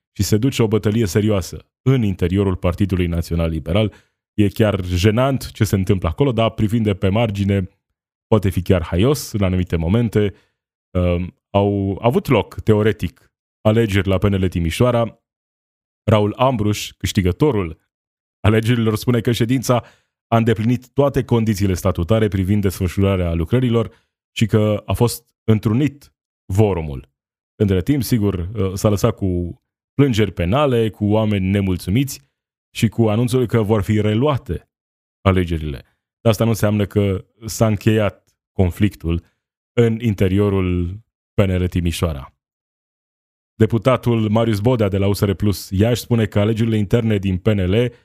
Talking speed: 130 wpm